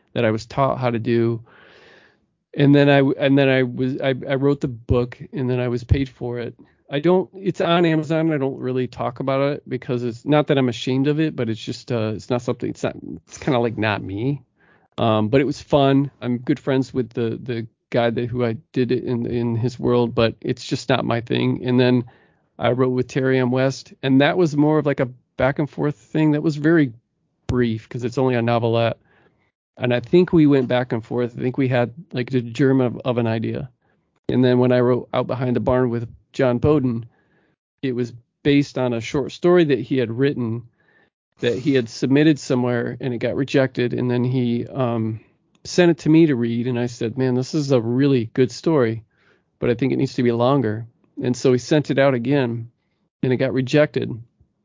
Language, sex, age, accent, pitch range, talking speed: English, male, 40-59, American, 120-140 Hz, 225 wpm